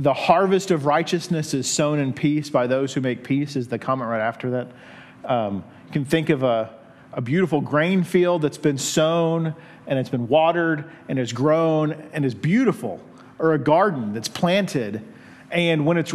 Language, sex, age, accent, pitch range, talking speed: English, male, 40-59, American, 150-205 Hz, 185 wpm